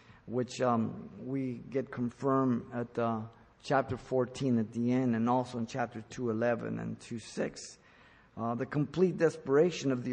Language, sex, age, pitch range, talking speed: English, male, 50-69, 115-135 Hz, 150 wpm